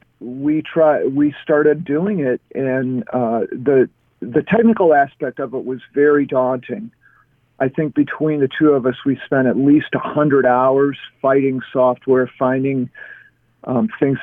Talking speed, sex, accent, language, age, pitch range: 150 wpm, male, American, English, 50-69, 125-150 Hz